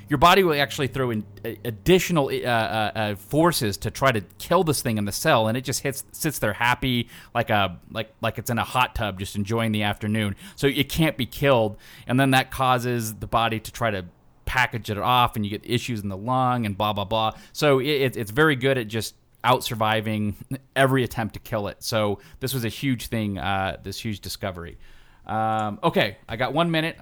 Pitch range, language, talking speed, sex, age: 105-130 Hz, English, 215 wpm, male, 30-49